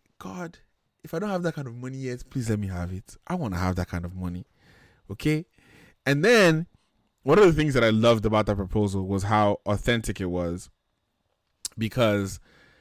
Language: English